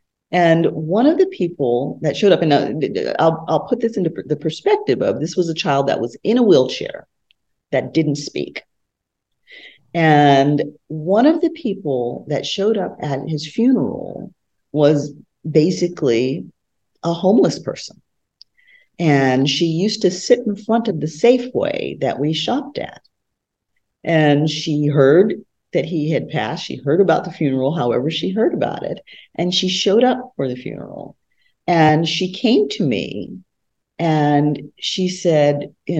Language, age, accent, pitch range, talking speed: English, 40-59, American, 145-205 Hz, 155 wpm